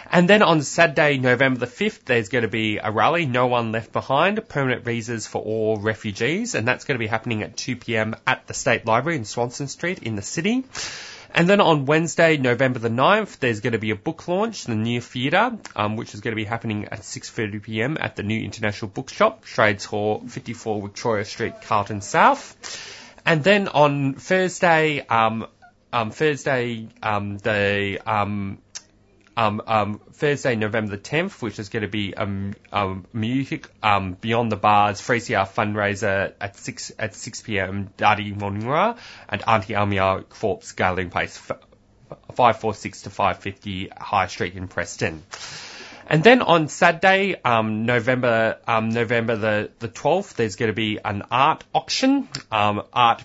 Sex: male